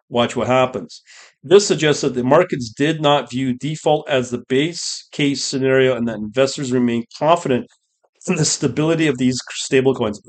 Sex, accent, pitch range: male, American, 120-150 Hz